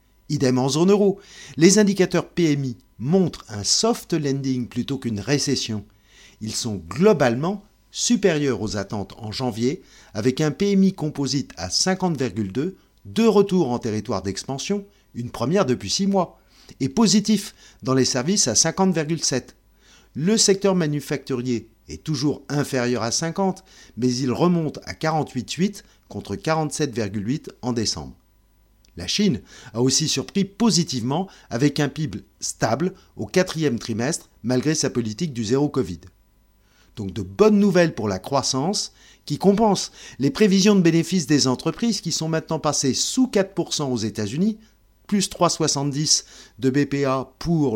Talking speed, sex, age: 140 wpm, male, 50-69